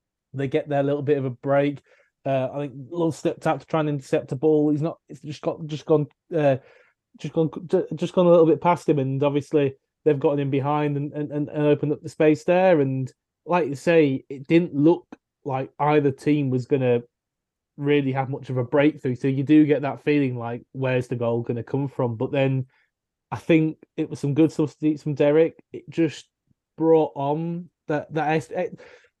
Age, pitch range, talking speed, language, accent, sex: 20-39, 135-155 Hz, 205 wpm, English, British, male